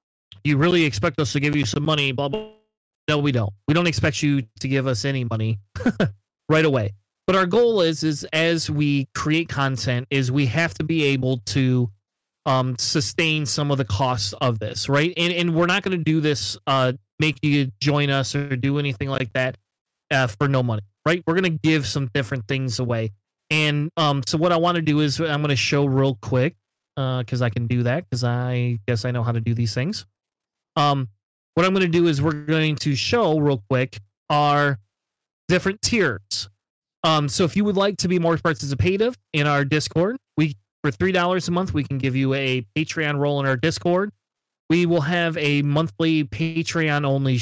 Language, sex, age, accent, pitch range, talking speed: English, male, 30-49, American, 130-165 Hz, 205 wpm